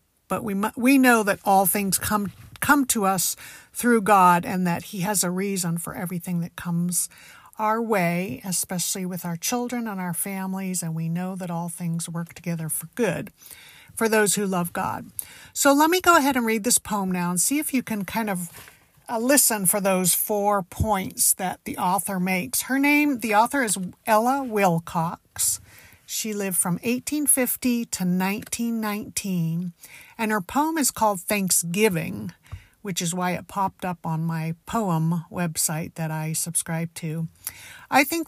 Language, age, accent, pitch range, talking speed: English, 50-69, American, 175-225 Hz, 170 wpm